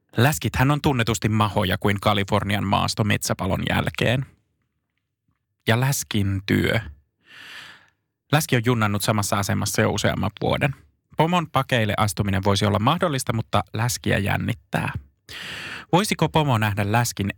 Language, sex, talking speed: Finnish, male, 115 wpm